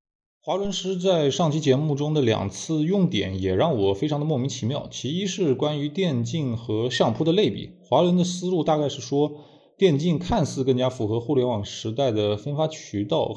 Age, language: 20-39, Chinese